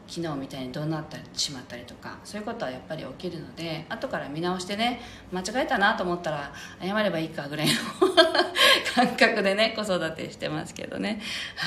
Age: 40-59